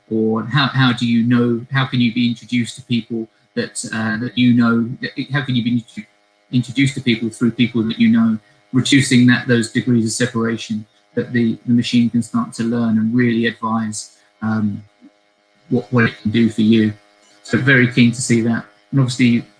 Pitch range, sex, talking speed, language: 110-130 Hz, male, 195 wpm, English